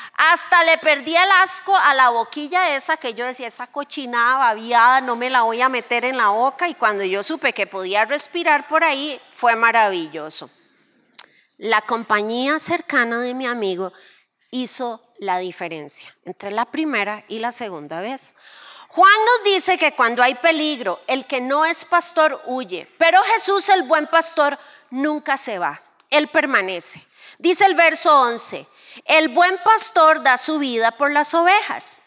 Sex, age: female, 30-49